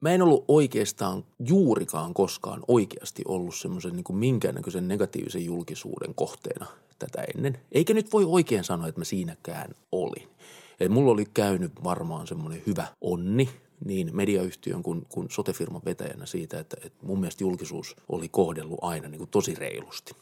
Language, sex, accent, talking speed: Finnish, male, native, 155 wpm